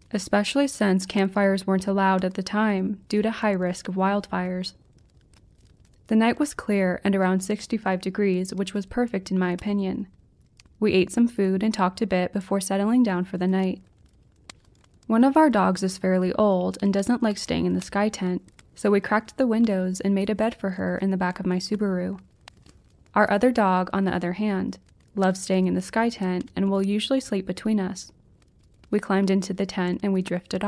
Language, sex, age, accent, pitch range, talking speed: English, female, 20-39, American, 185-215 Hz, 200 wpm